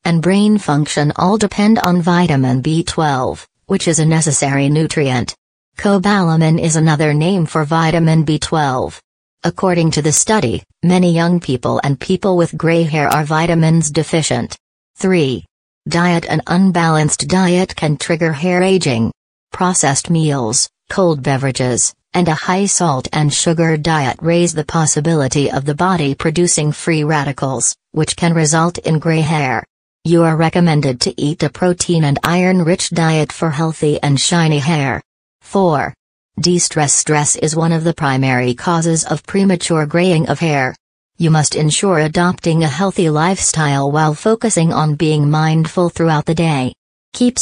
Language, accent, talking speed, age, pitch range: English, American, 145 wpm, 40-59, 150-175 Hz